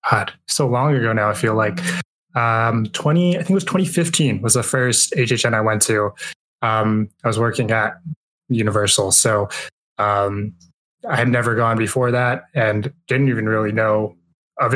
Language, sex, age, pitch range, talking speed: English, male, 10-29, 105-135 Hz, 165 wpm